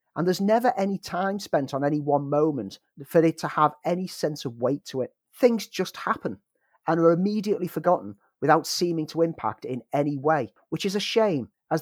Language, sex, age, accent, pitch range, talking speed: English, male, 40-59, British, 140-180 Hz, 200 wpm